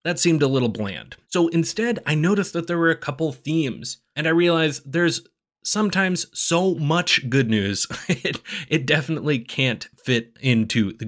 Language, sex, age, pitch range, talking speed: English, male, 30-49, 120-165 Hz, 170 wpm